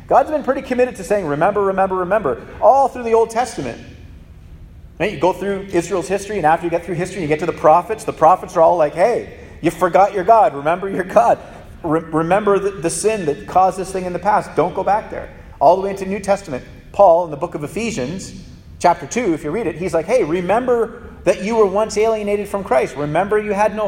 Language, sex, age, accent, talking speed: English, male, 40-59, American, 230 wpm